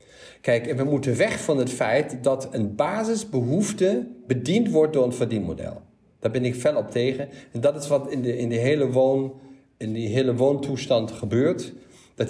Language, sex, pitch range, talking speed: Dutch, male, 120-150 Hz, 165 wpm